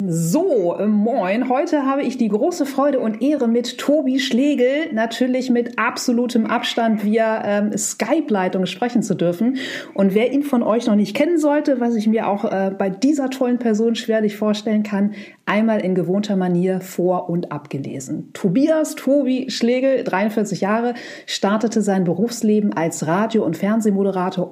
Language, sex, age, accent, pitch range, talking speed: German, female, 40-59, German, 180-240 Hz, 155 wpm